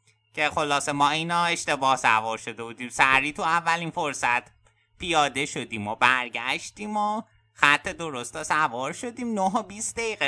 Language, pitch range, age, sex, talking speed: Persian, 115-175 Hz, 30-49, male, 145 wpm